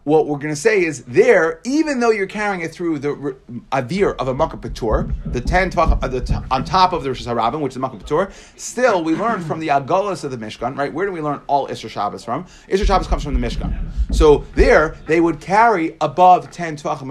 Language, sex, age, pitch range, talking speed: English, male, 30-49, 130-180 Hz, 225 wpm